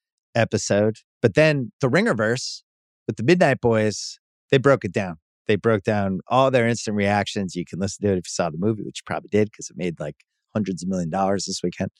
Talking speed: 220 wpm